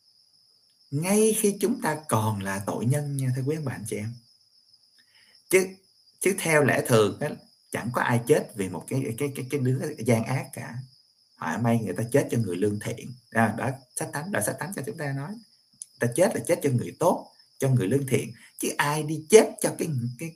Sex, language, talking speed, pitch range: male, Vietnamese, 210 wpm, 105-135 Hz